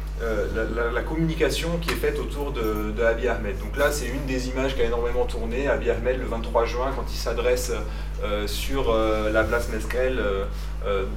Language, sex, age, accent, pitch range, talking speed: French, male, 30-49, French, 115-145 Hz, 210 wpm